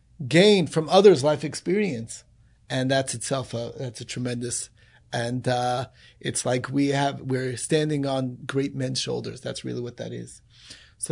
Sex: male